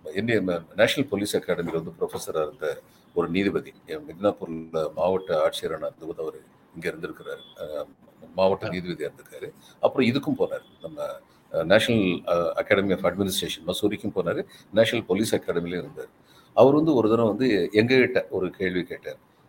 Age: 50-69